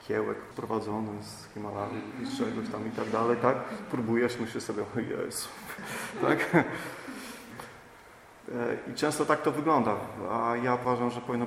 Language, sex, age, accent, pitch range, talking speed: Polish, male, 30-49, native, 115-125 Hz, 140 wpm